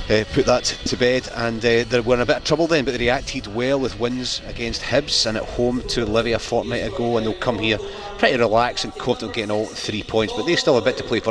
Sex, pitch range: male, 105-120 Hz